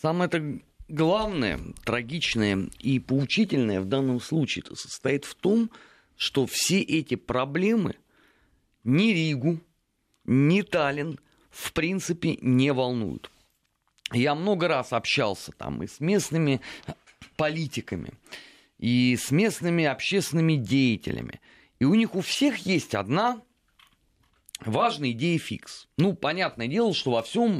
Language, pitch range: Russian, 120-180 Hz